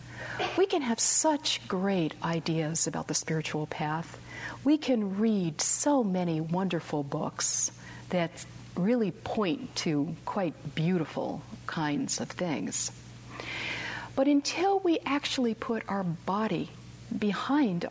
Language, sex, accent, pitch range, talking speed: English, female, American, 150-215 Hz, 115 wpm